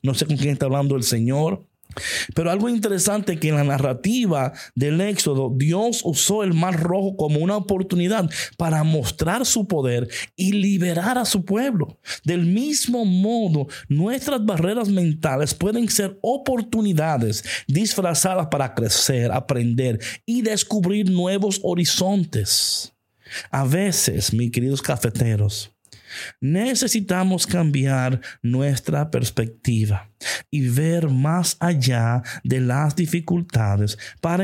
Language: Spanish